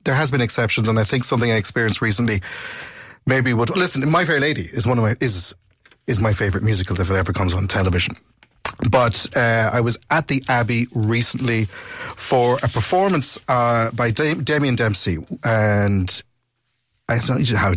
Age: 30-49